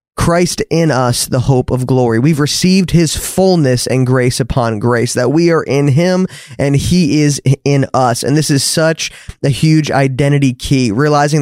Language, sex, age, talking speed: English, male, 20-39, 185 wpm